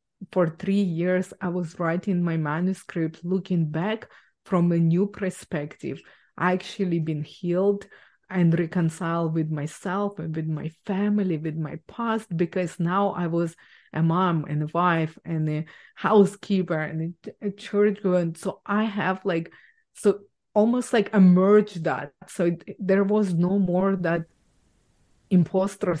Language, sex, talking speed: English, female, 140 wpm